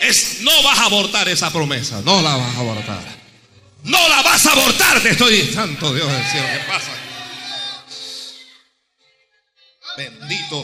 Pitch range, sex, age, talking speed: 130-205 Hz, male, 50-69, 140 wpm